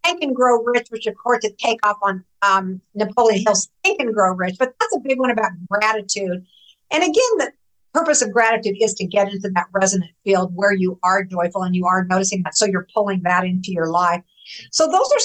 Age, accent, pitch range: 50-69, American, 190-250 Hz